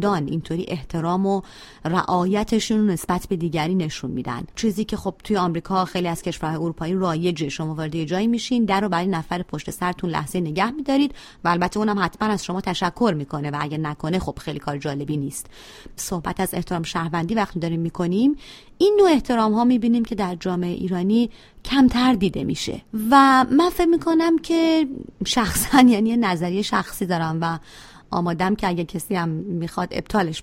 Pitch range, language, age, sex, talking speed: 165-225 Hz, Persian, 30-49, female, 170 wpm